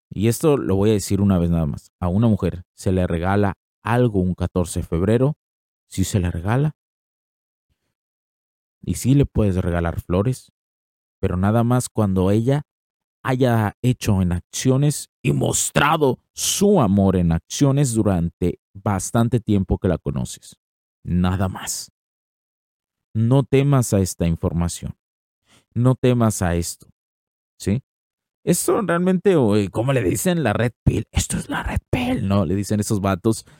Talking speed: 145 wpm